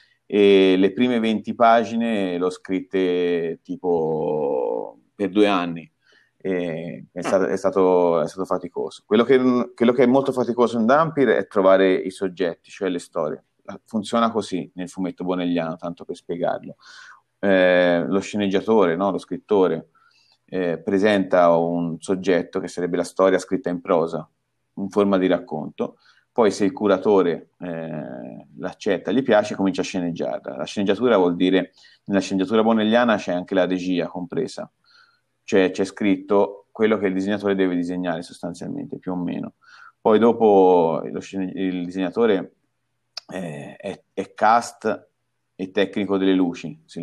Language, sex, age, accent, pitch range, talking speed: Italian, male, 30-49, native, 90-100 Hz, 145 wpm